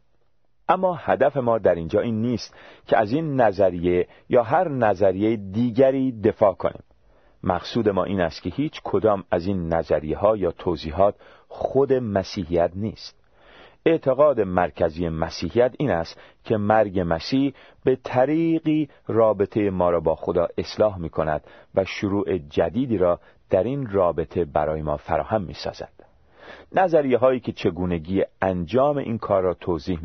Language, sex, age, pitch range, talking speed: Persian, male, 40-59, 90-125 Hz, 140 wpm